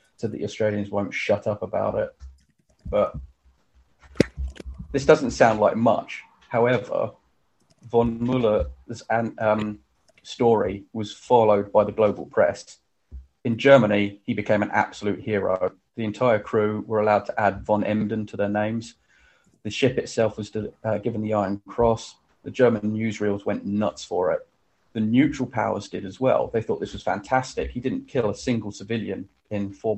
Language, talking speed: English, 160 wpm